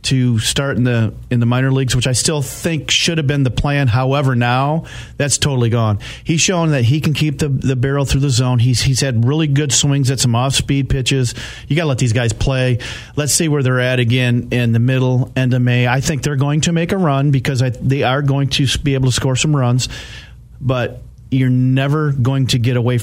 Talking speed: 235 wpm